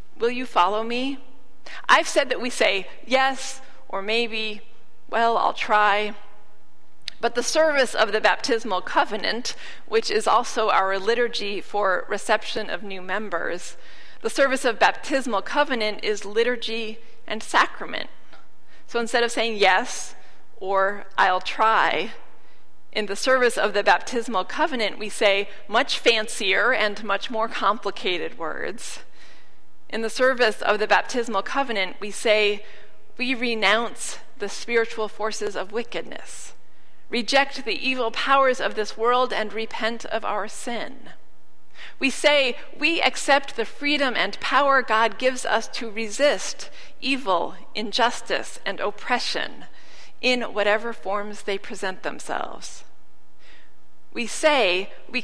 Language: English